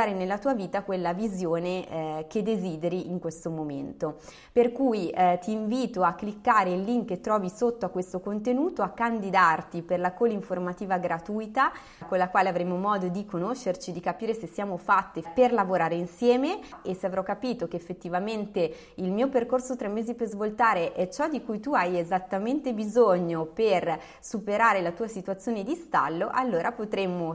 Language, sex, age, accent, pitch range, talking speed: Italian, female, 20-39, native, 180-230 Hz, 170 wpm